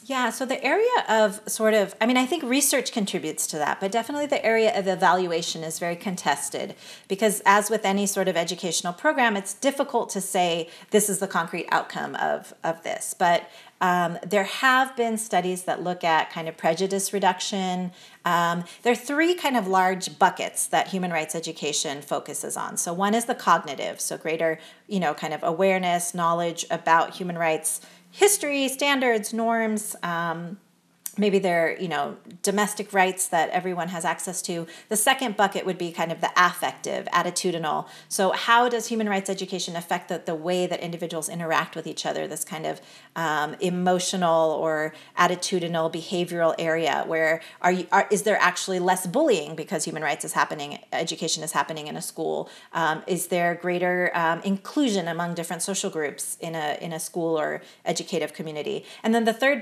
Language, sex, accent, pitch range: English, female, American, 170-215 Hz